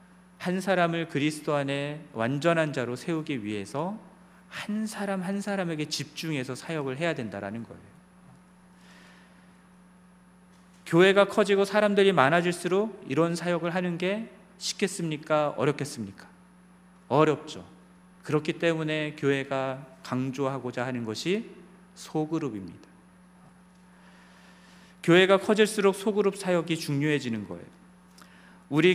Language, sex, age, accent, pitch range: Korean, male, 40-59, native, 140-180 Hz